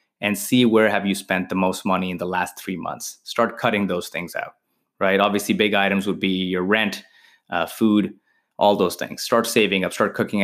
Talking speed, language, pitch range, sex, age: 215 wpm, English, 95-110 Hz, male, 20-39